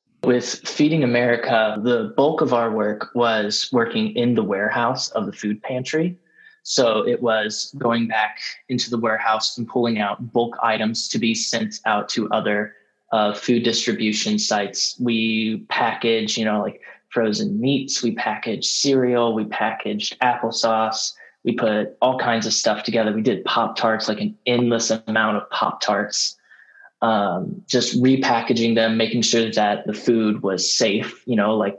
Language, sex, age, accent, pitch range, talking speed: English, male, 20-39, American, 110-125 Hz, 160 wpm